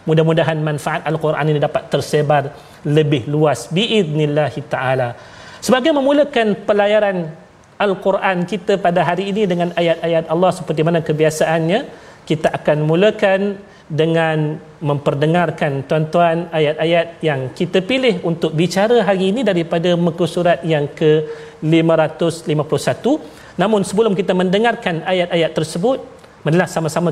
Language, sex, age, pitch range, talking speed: Malayalam, male, 40-59, 155-185 Hz, 115 wpm